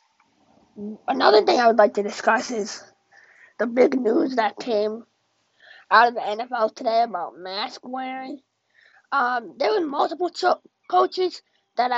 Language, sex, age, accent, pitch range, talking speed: English, female, 20-39, American, 200-250 Hz, 140 wpm